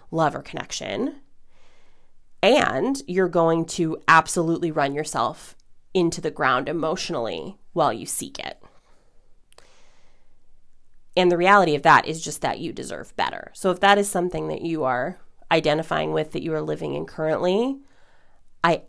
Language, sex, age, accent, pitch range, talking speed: English, female, 30-49, American, 155-185 Hz, 145 wpm